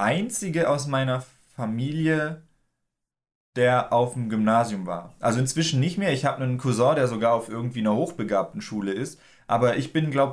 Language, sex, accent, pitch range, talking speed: German, male, German, 120-155 Hz, 170 wpm